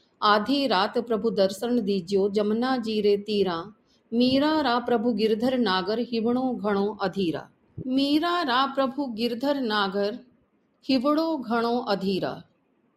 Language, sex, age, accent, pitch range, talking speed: Hindi, female, 40-59, native, 200-255 Hz, 110 wpm